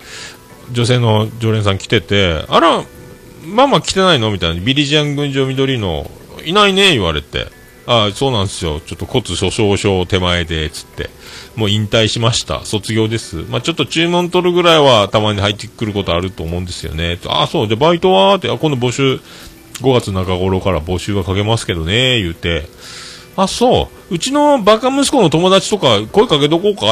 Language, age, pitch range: Japanese, 40-59, 85-135 Hz